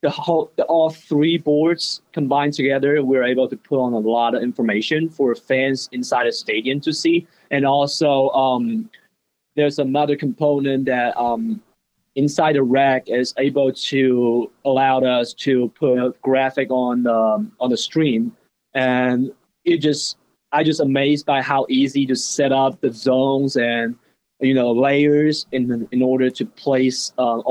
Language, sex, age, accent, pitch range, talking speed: English, male, 20-39, Chinese, 125-145 Hz, 155 wpm